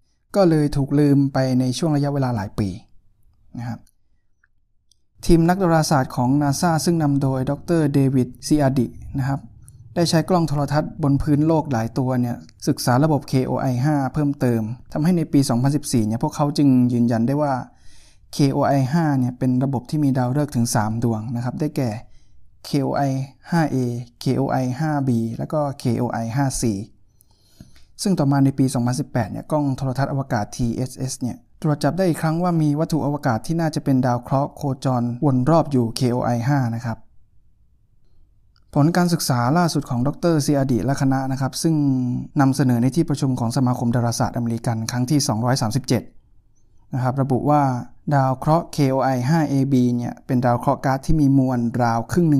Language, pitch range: Thai, 120-145 Hz